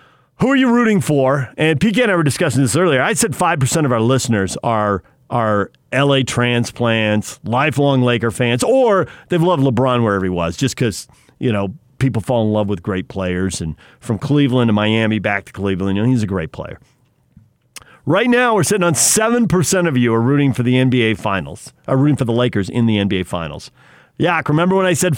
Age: 40-59